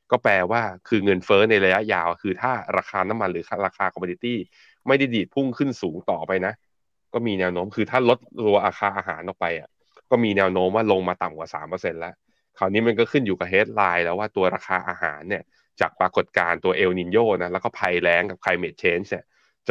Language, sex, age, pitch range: Thai, male, 20-39, 85-110 Hz